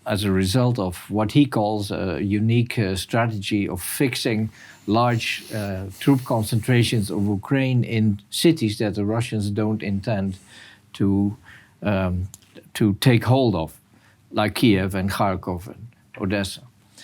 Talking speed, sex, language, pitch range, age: 130 wpm, male, Dutch, 100-115 Hz, 50-69